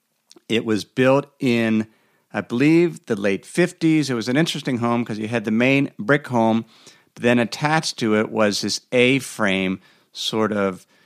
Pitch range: 105-140 Hz